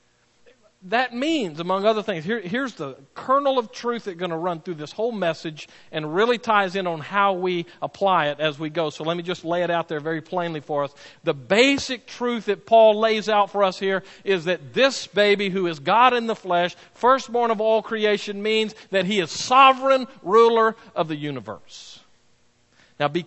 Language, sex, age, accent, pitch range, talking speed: English, male, 50-69, American, 155-220 Hz, 200 wpm